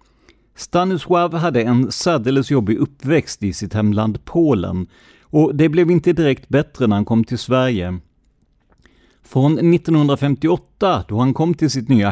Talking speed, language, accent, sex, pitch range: 145 wpm, Swedish, native, male, 110-150 Hz